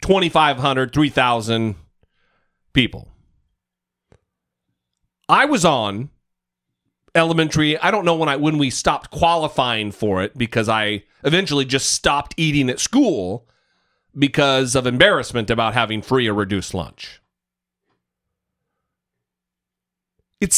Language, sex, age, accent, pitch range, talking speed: English, male, 40-59, American, 115-185 Hz, 100 wpm